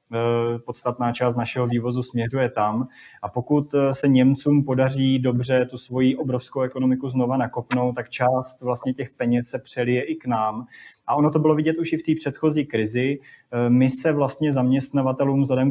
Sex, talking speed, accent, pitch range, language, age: male, 170 wpm, native, 120-135 Hz, Czech, 20-39